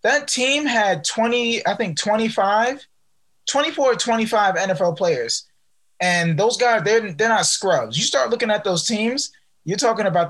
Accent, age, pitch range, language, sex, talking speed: American, 20-39, 165-205 Hz, English, male, 165 wpm